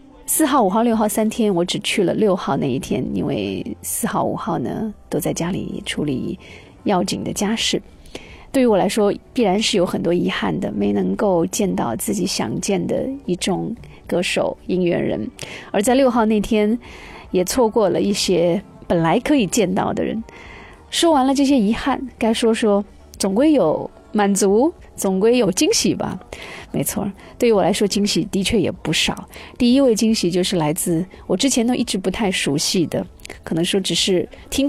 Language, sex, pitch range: Chinese, female, 180-235 Hz